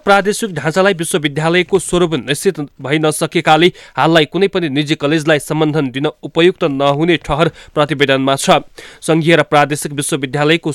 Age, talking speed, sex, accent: 30-49, 130 wpm, male, Indian